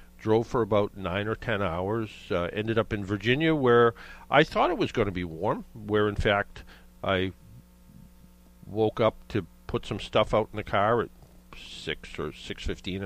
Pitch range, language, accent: 85-115 Hz, English, American